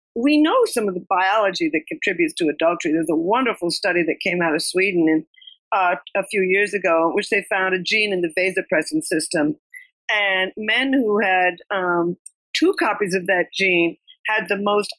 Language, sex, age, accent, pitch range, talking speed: English, female, 50-69, American, 170-230 Hz, 185 wpm